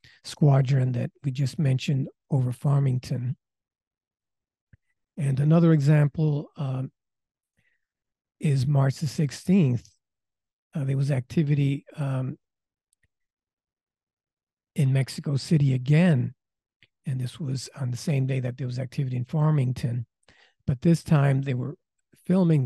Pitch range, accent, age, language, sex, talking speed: 130-155 Hz, American, 50-69, English, male, 115 wpm